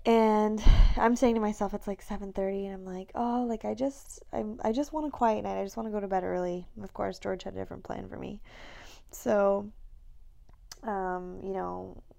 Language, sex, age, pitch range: English, female, 10-29, 170-215 Hz